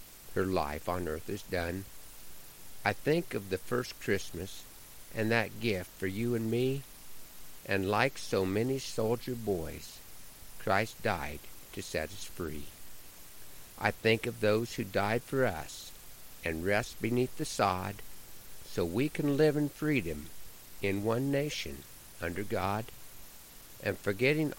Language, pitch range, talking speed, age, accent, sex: English, 90-120 Hz, 140 wpm, 50-69, American, male